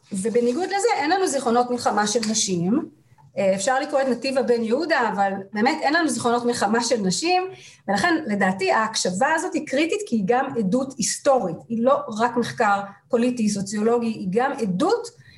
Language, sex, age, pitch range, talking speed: Hebrew, female, 30-49, 200-270 Hz, 160 wpm